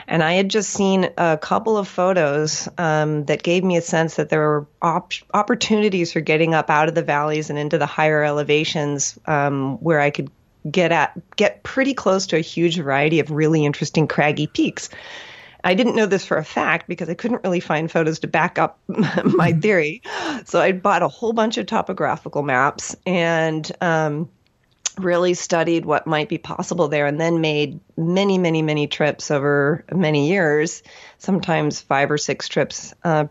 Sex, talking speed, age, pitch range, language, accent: female, 185 wpm, 30-49, 150-180 Hz, English, American